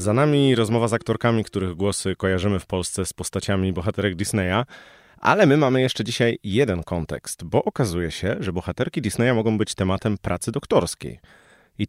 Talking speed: 165 wpm